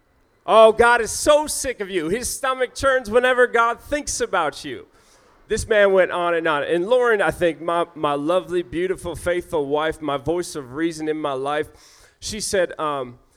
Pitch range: 145-180 Hz